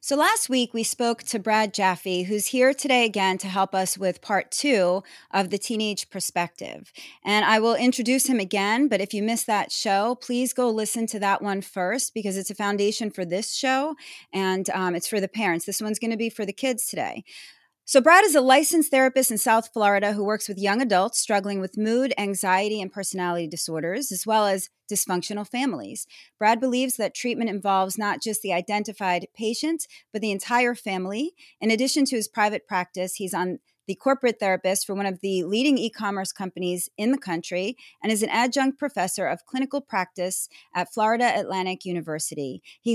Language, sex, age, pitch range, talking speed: English, female, 30-49, 190-245 Hz, 190 wpm